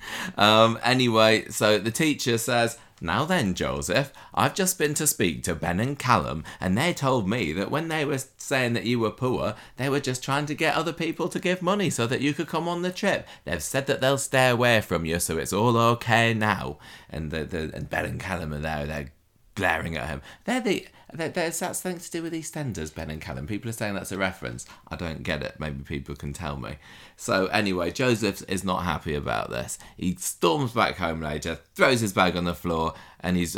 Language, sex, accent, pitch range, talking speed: English, male, British, 85-125 Hz, 220 wpm